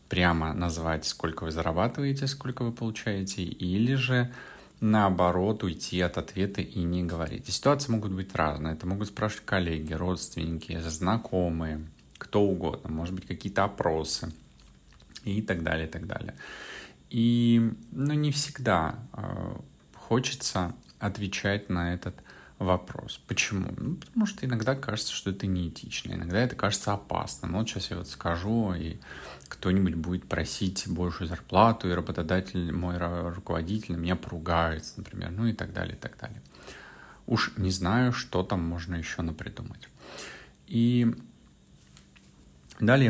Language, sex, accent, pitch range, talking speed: Russian, male, native, 85-110 Hz, 135 wpm